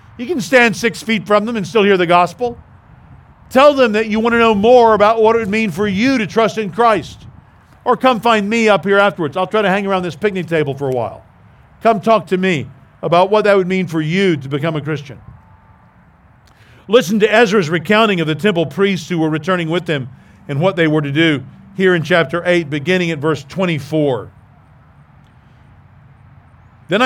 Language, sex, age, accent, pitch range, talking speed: English, male, 50-69, American, 135-195 Hz, 205 wpm